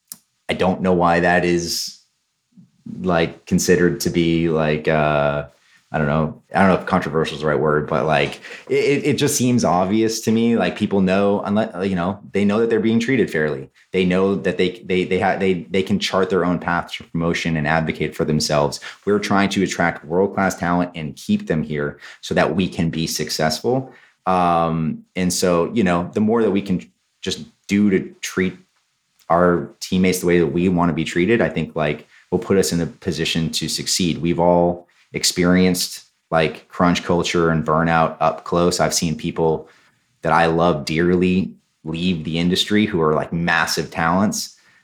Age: 30-49